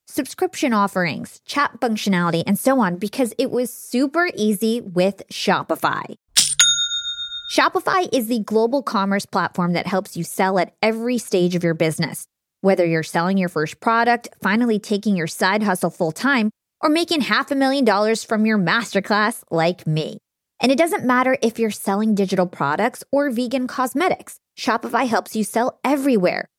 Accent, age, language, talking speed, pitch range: American, 20-39, English, 160 wpm, 185-255 Hz